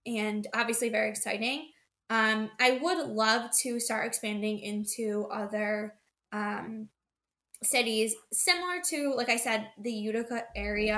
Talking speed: 125 wpm